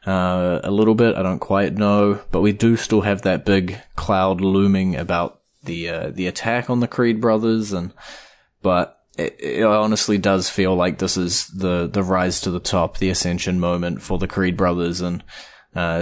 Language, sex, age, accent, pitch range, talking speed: English, male, 20-39, Australian, 90-105 Hz, 190 wpm